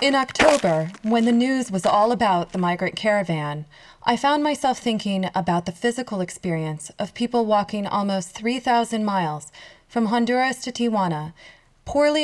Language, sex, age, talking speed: English, female, 20-39, 145 wpm